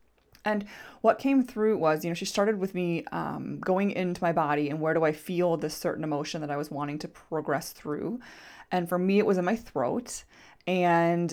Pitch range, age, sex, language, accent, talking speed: 155-205 Hz, 20-39, female, English, American, 210 wpm